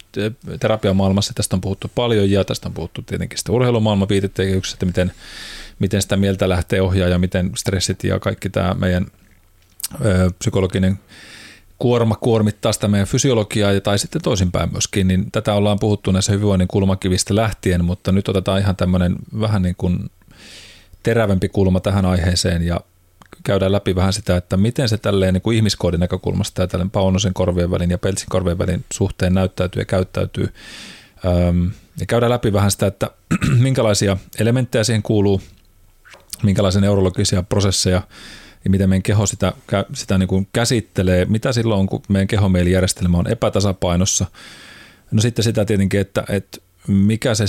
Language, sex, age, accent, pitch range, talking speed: Finnish, male, 30-49, native, 95-105 Hz, 155 wpm